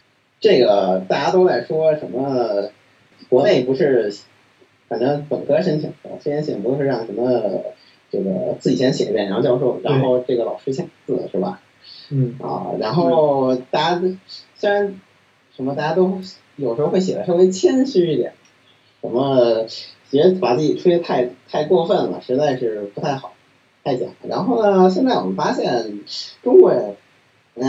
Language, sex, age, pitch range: Chinese, male, 30-49, 125-185 Hz